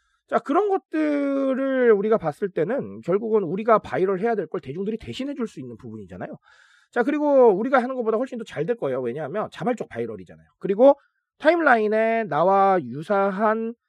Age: 40-59